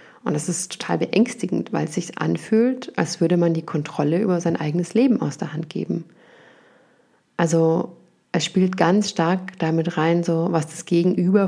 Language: German